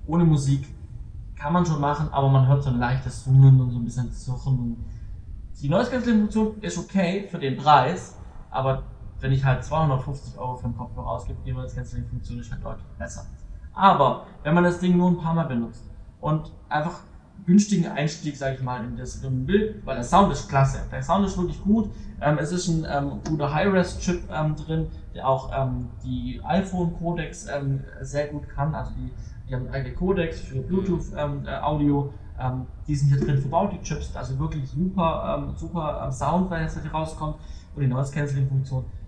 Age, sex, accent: 20-39, male, German